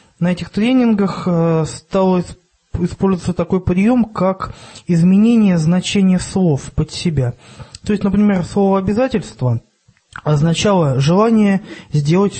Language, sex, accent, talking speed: Russian, male, native, 100 wpm